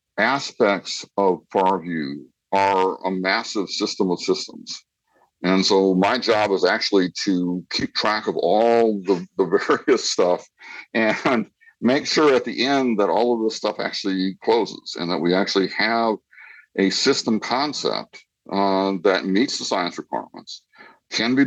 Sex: male